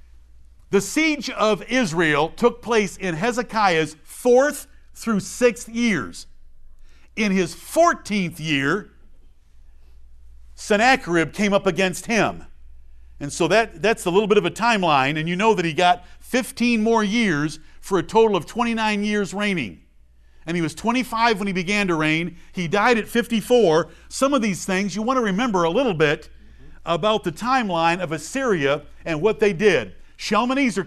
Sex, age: male, 50-69